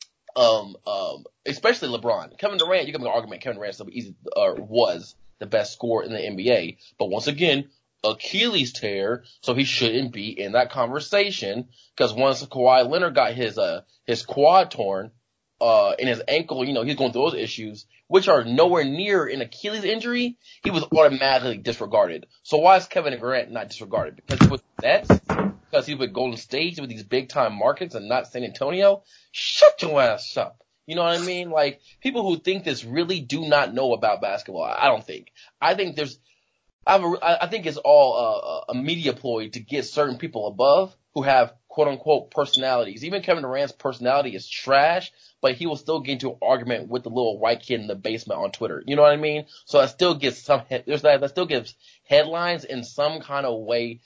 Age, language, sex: 20-39, English, male